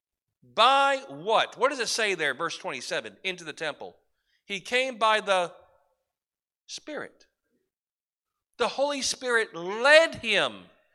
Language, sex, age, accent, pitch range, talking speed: English, male, 40-59, American, 195-295 Hz, 120 wpm